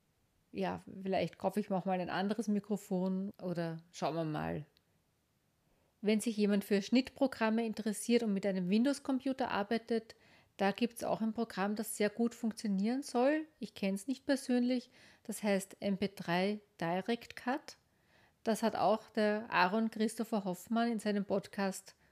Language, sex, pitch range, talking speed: German, female, 190-230 Hz, 150 wpm